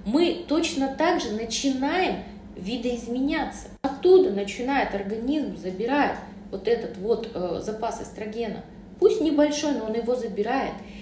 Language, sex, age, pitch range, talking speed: Russian, female, 30-49, 205-255 Hz, 120 wpm